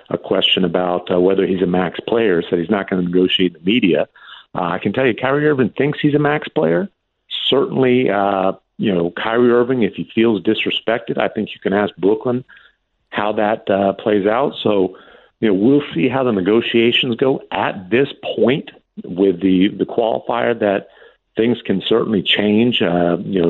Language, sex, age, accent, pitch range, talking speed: English, male, 50-69, American, 90-115 Hz, 190 wpm